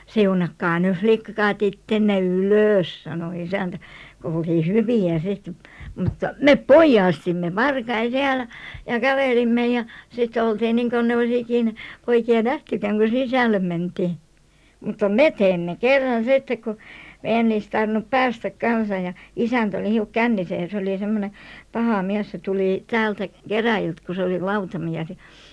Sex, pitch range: male, 185-225 Hz